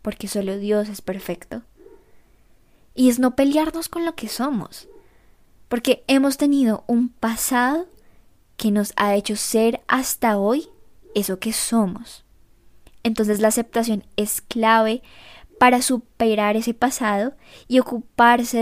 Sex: male